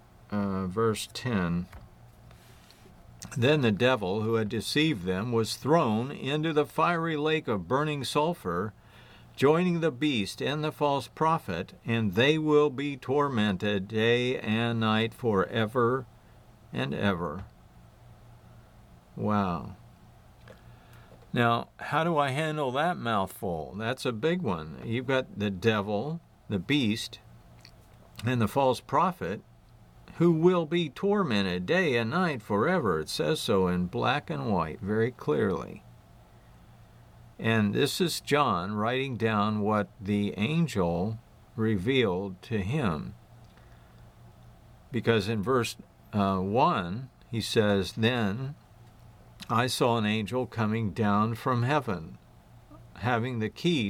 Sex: male